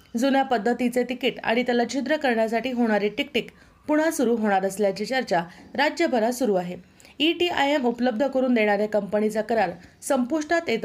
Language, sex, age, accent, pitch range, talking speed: Marathi, female, 30-49, native, 210-265 Hz, 140 wpm